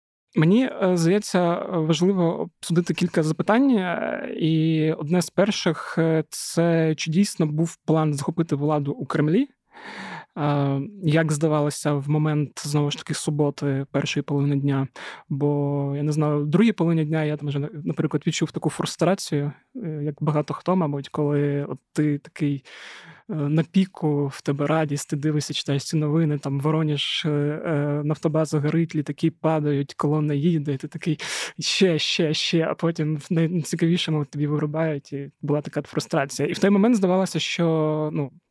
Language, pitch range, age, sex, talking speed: Ukrainian, 145-165 Hz, 20-39, male, 150 wpm